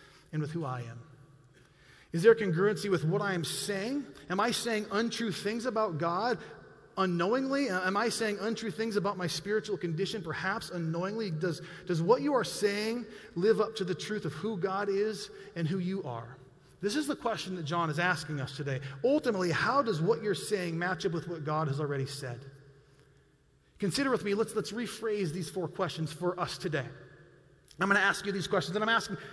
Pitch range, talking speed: 155-200 Hz, 200 wpm